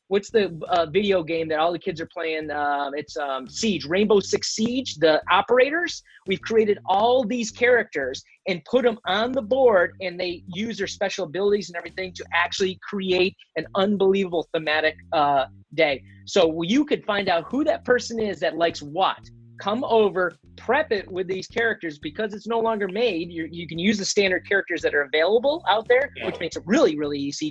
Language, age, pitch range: English, 30-49, 160-205 Hz